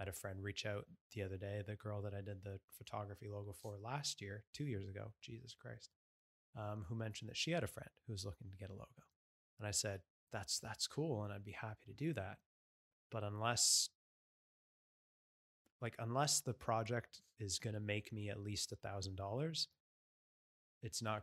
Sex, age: male, 20-39